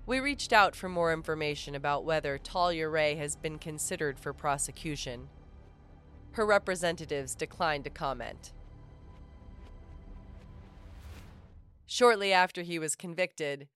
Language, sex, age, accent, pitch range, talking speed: English, female, 30-49, American, 140-170 Hz, 110 wpm